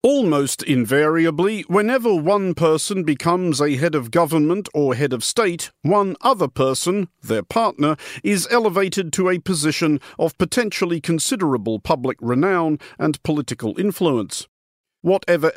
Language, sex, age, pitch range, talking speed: English, male, 50-69, 145-195 Hz, 125 wpm